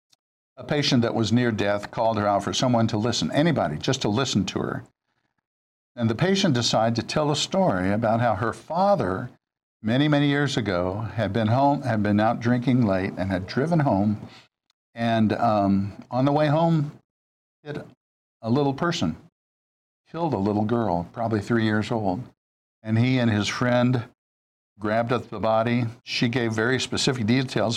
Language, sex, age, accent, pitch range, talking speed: English, male, 60-79, American, 100-130 Hz, 170 wpm